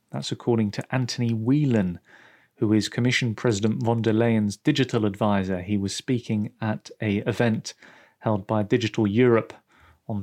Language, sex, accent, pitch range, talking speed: English, male, British, 110-130 Hz, 145 wpm